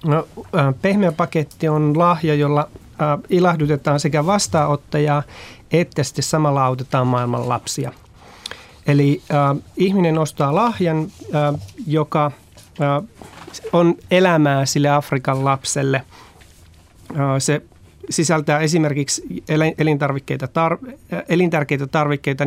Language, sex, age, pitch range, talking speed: Finnish, male, 30-49, 130-155 Hz, 95 wpm